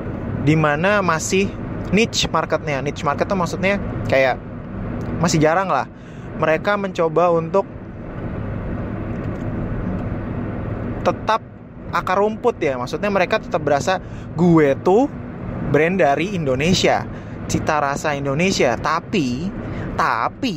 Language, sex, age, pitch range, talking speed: Indonesian, male, 20-39, 135-195 Hz, 100 wpm